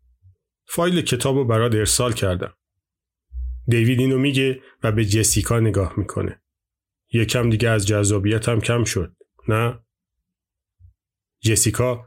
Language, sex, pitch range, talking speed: Persian, male, 105-130 Hz, 115 wpm